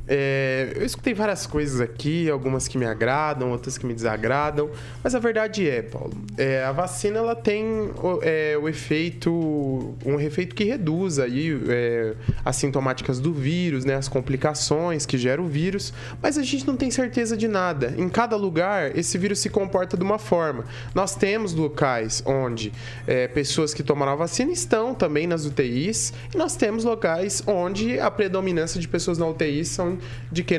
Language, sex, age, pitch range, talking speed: Portuguese, male, 20-39, 135-205 Hz, 175 wpm